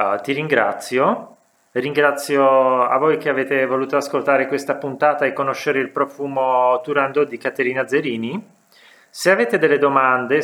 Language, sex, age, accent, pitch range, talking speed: Italian, male, 30-49, native, 120-150 Hz, 140 wpm